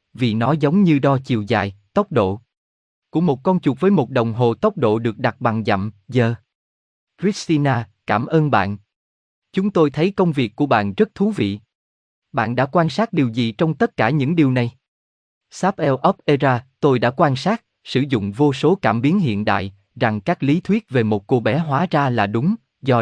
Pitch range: 110-155 Hz